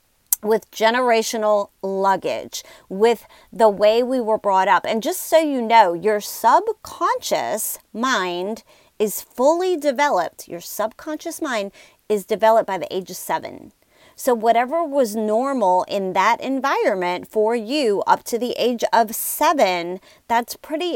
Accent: American